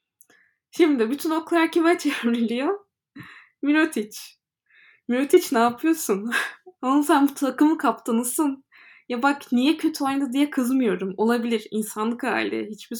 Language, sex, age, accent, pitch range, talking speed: Turkish, female, 20-39, native, 260-355 Hz, 115 wpm